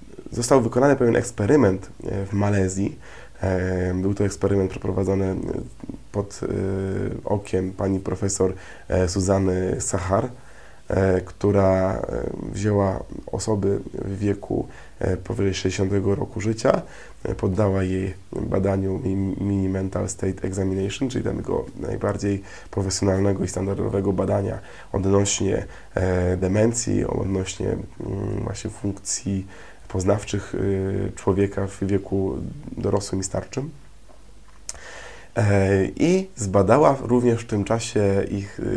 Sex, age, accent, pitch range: male, 20-39, native, 95-105 Hz